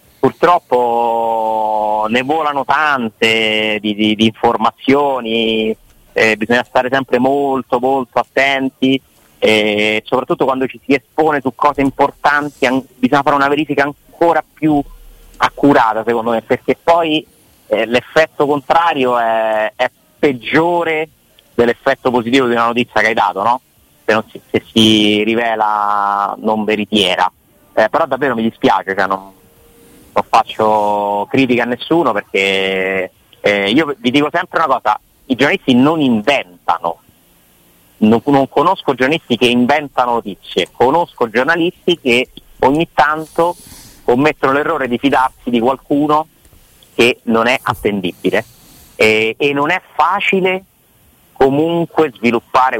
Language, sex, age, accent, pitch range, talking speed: Italian, male, 30-49, native, 110-145 Hz, 130 wpm